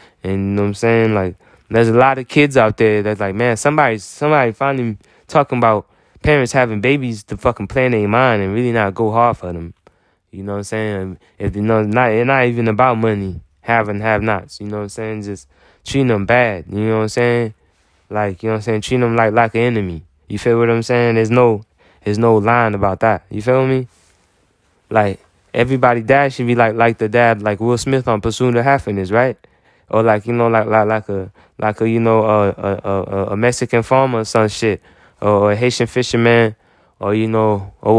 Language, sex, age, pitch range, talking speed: English, male, 20-39, 100-120 Hz, 225 wpm